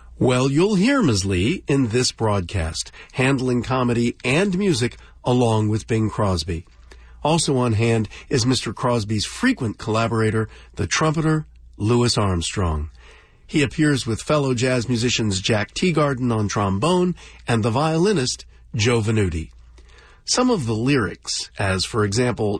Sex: male